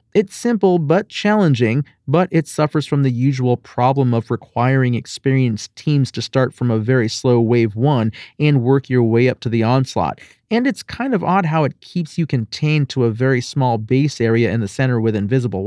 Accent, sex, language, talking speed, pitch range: American, male, English, 200 wpm, 125-155 Hz